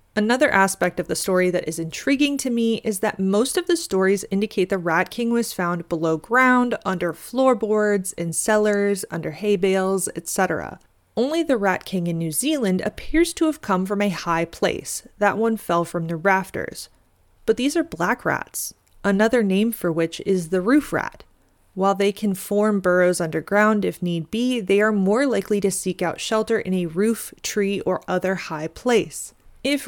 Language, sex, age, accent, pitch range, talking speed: English, female, 30-49, American, 180-220 Hz, 185 wpm